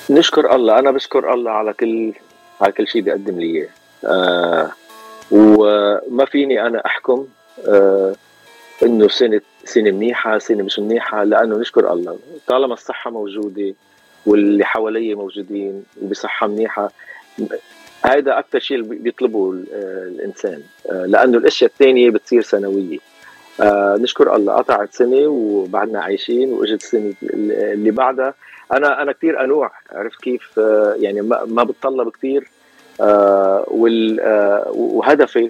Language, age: Arabic, 40-59